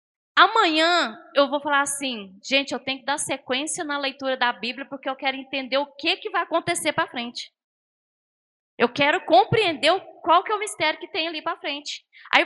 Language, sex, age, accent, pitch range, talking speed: Portuguese, female, 20-39, Brazilian, 255-335 Hz, 195 wpm